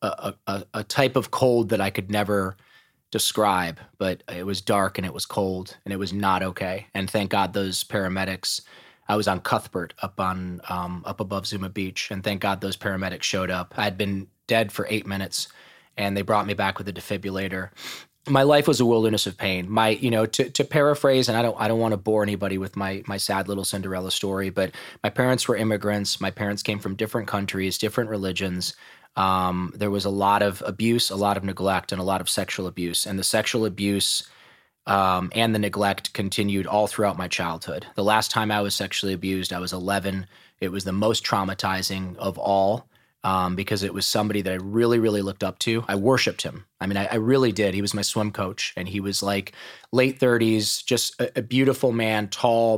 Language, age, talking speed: English, 20-39, 215 wpm